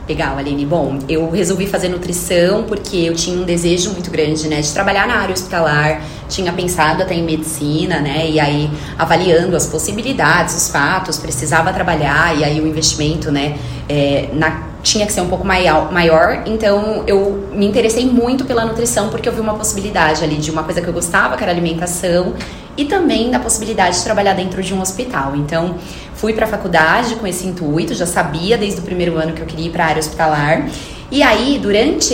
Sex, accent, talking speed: female, Brazilian, 190 wpm